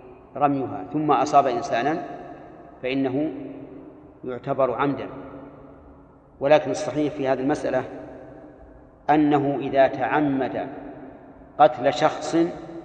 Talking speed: 80 wpm